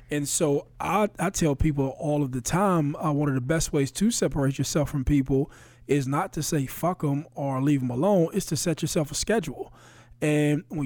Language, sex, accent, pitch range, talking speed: English, male, American, 135-165 Hz, 215 wpm